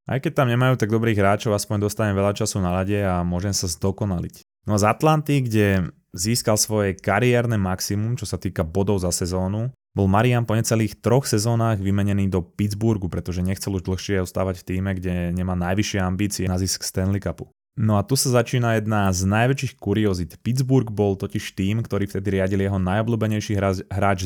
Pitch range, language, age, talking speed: 95-115 Hz, Slovak, 20-39, 185 wpm